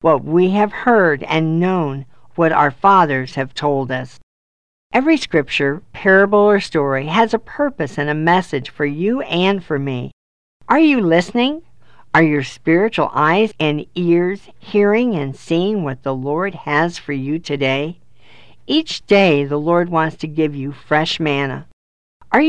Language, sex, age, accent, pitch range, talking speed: English, female, 50-69, American, 140-190 Hz, 155 wpm